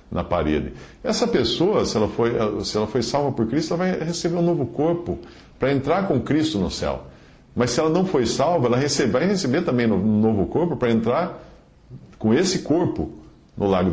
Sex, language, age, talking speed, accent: male, Portuguese, 50-69, 200 wpm, Brazilian